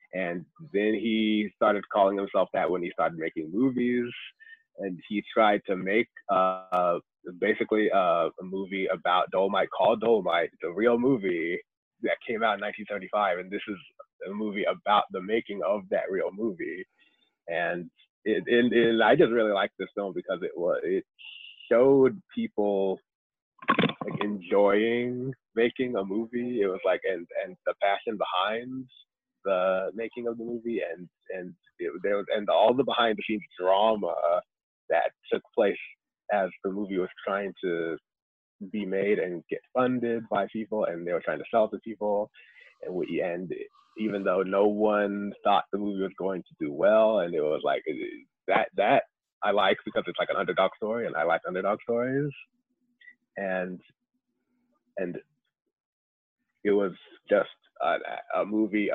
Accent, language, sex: American, English, male